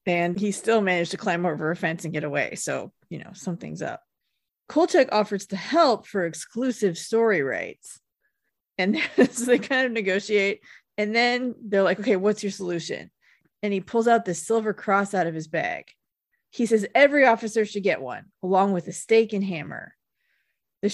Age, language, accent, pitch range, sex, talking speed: 30-49, English, American, 180-230 Hz, female, 180 wpm